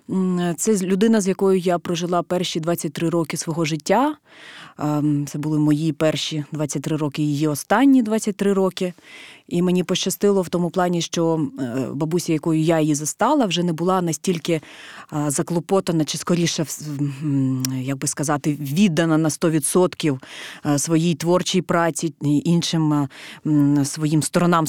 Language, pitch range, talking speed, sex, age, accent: Ukrainian, 150-185 Hz, 130 wpm, female, 20-39, native